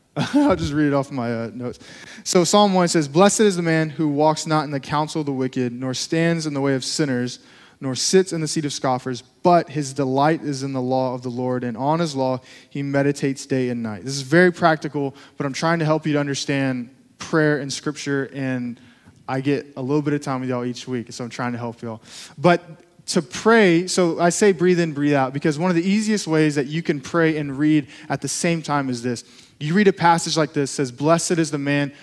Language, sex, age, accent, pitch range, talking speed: English, male, 20-39, American, 135-170 Hz, 245 wpm